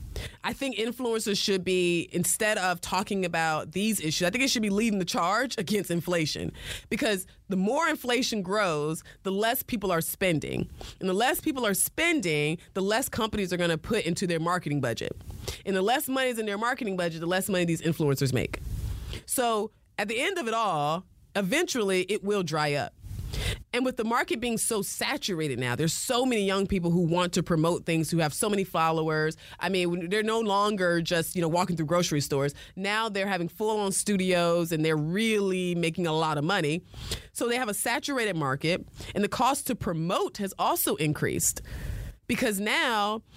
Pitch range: 165-215 Hz